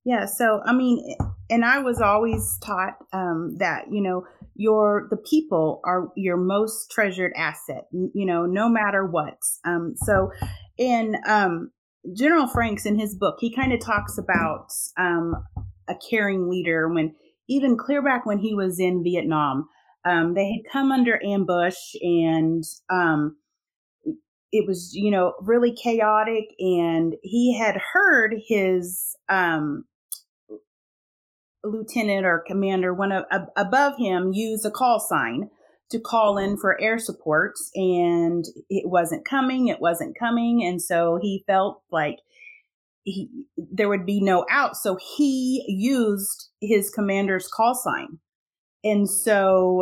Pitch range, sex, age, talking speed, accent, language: 175-220 Hz, female, 30-49, 140 wpm, American, English